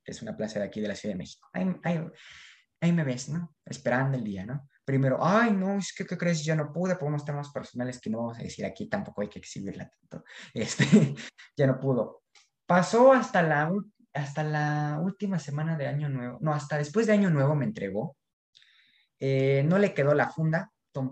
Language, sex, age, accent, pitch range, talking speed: Spanish, male, 20-39, Mexican, 130-180 Hz, 210 wpm